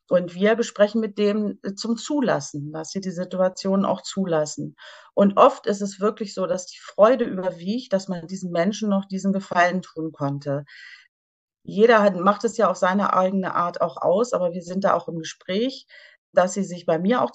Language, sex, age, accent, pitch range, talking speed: German, female, 40-59, German, 180-220 Hz, 190 wpm